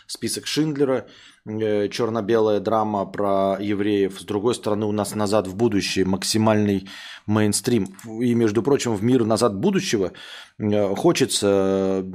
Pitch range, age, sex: 105-130 Hz, 20-39, male